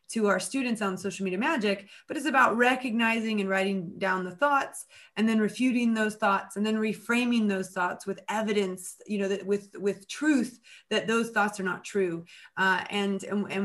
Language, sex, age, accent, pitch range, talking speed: English, female, 20-39, American, 195-240 Hz, 195 wpm